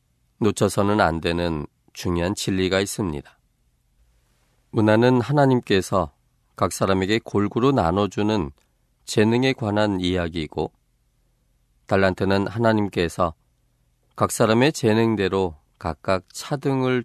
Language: Korean